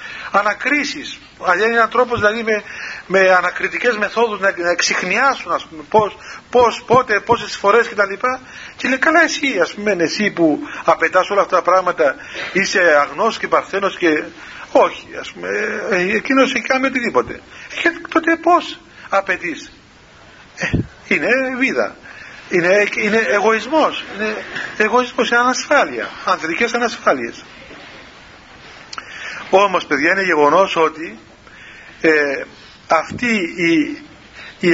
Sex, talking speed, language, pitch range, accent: male, 115 wpm, Greek, 175-245 Hz, native